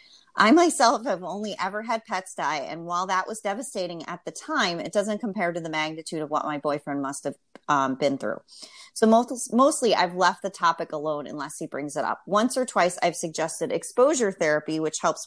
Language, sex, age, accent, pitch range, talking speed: English, female, 30-49, American, 155-205 Hz, 205 wpm